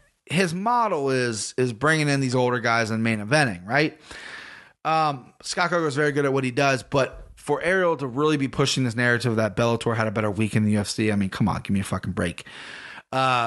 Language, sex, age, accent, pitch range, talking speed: English, male, 30-49, American, 115-150 Hz, 225 wpm